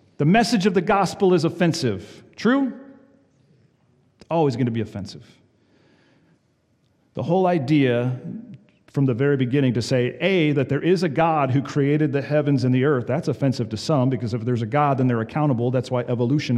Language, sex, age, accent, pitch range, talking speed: English, male, 40-59, American, 125-190 Hz, 185 wpm